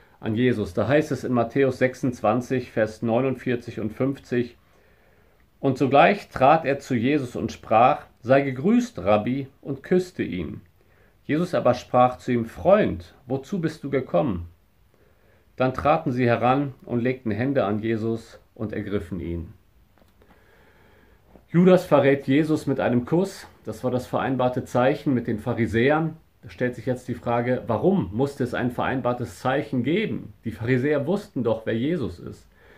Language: German